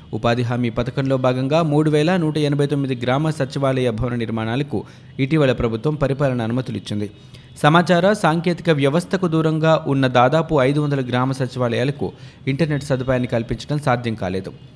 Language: Telugu